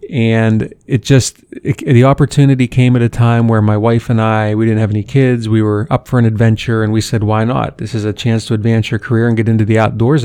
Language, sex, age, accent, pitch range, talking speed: English, male, 30-49, American, 110-120 Hz, 250 wpm